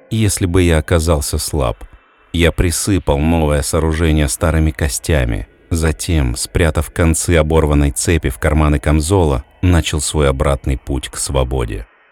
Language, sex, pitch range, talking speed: Russian, male, 75-90 Hz, 125 wpm